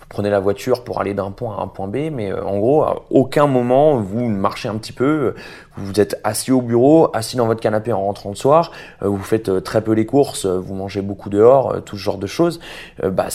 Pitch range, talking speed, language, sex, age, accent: 105-145 Hz, 230 wpm, French, male, 30-49, French